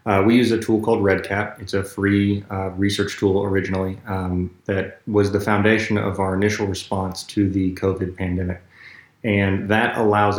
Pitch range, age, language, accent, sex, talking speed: 95-105 Hz, 30-49, English, American, male, 175 wpm